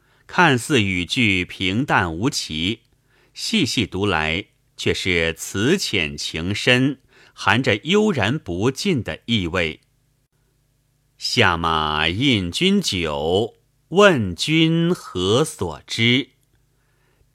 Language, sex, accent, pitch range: Chinese, male, native, 95-135 Hz